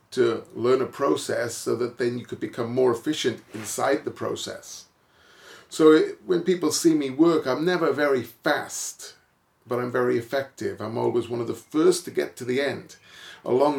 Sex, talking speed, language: male, 180 wpm, English